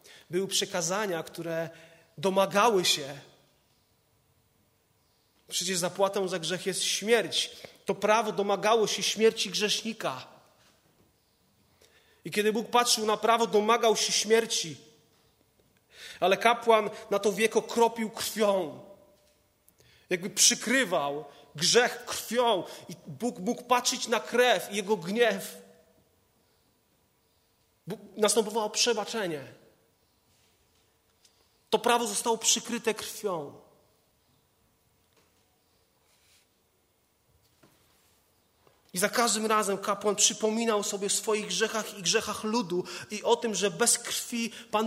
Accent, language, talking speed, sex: native, Polish, 100 wpm, male